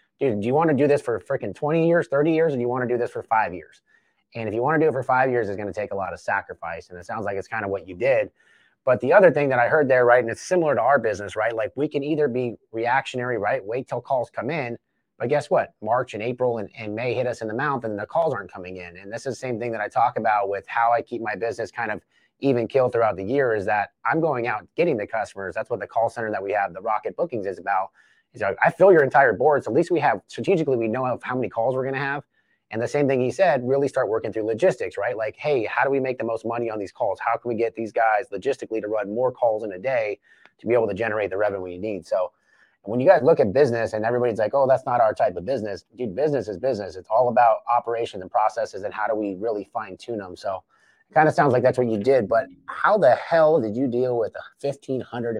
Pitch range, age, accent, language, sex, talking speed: 110-135 Hz, 30-49, American, English, male, 290 wpm